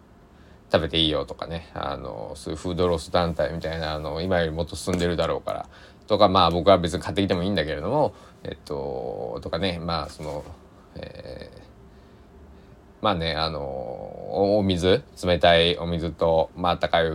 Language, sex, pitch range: Japanese, male, 80-100 Hz